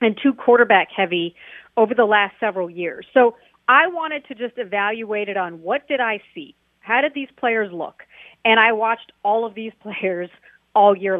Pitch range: 195-245 Hz